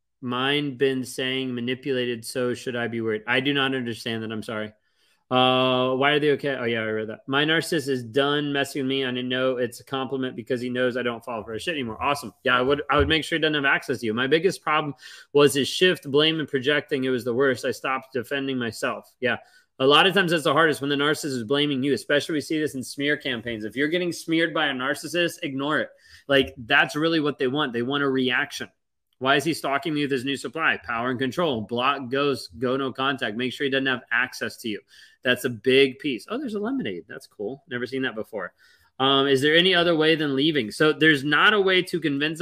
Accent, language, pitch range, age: American, English, 125-150 Hz, 30-49